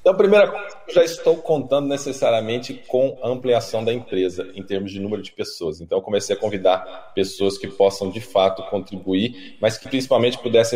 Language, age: Portuguese, 20-39